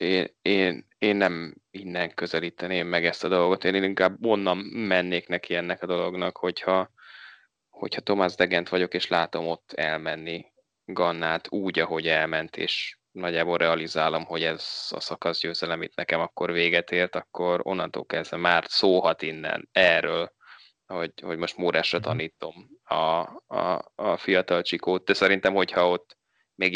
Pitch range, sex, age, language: 85-95 Hz, male, 20-39, Hungarian